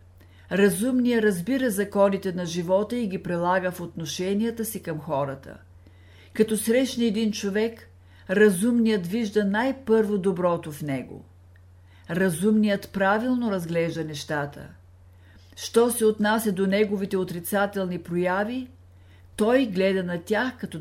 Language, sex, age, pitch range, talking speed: Bulgarian, female, 50-69, 135-210 Hz, 110 wpm